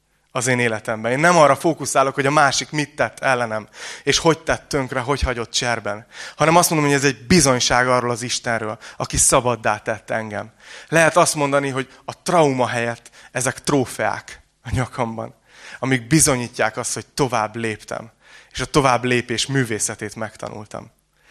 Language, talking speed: Hungarian, 160 wpm